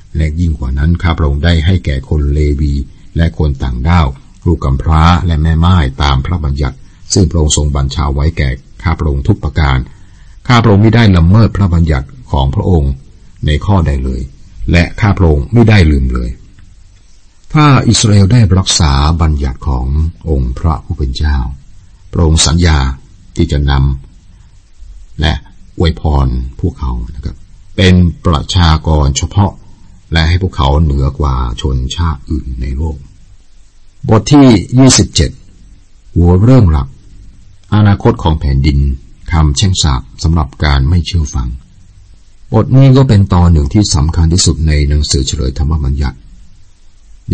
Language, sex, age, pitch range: Thai, male, 60-79, 70-95 Hz